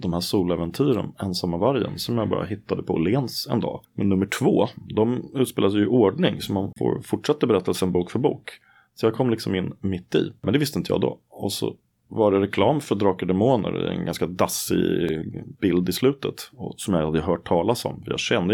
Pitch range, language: 90-115 Hz, Swedish